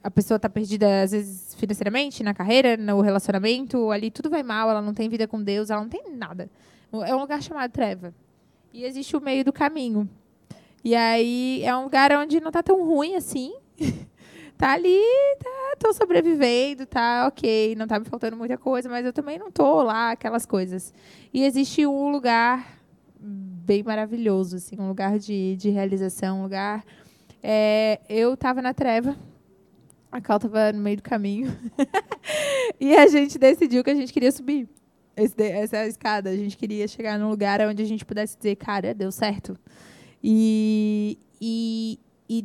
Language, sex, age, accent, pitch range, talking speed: Portuguese, female, 20-39, Brazilian, 205-255 Hz, 180 wpm